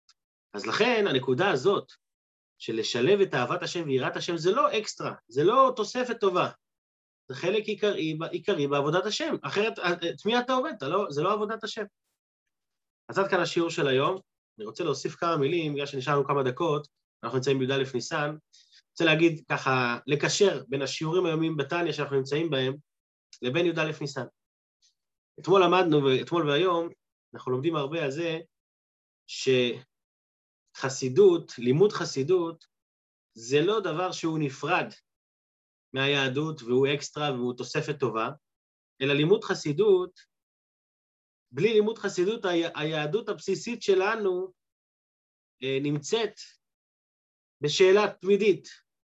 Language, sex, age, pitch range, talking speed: Hebrew, male, 30-49, 135-195 Hz, 120 wpm